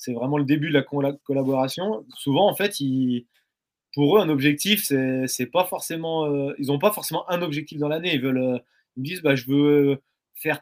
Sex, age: male, 20-39